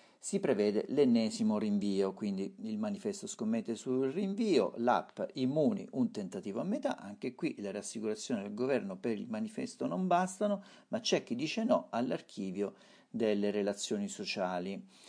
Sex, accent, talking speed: male, native, 145 wpm